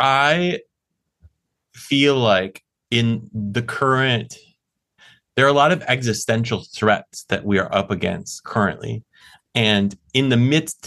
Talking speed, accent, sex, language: 125 wpm, American, male, English